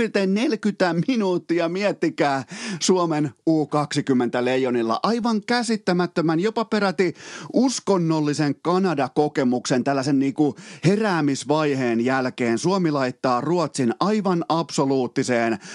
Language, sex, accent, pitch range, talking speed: Finnish, male, native, 125-170 Hz, 75 wpm